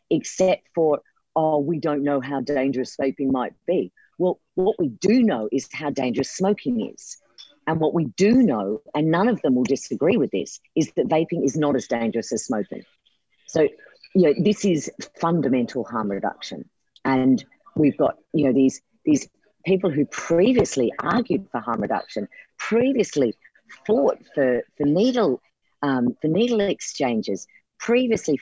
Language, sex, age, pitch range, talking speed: English, female, 50-69, 140-205 Hz, 160 wpm